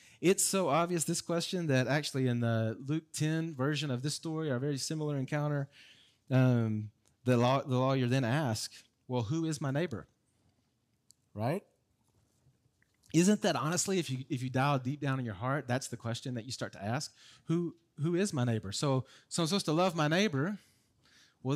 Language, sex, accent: English, male, American